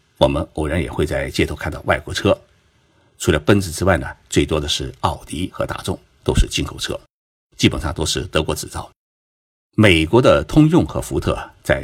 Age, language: 50-69, Chinese